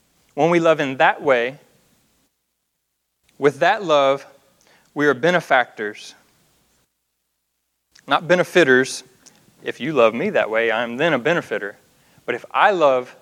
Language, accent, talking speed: English, American, 130 wpm